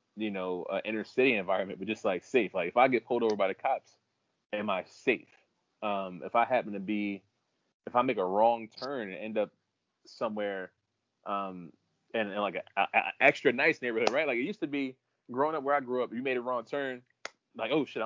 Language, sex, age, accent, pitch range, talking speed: English, male, 20-39, American, 95-120 Hz, 225 wpm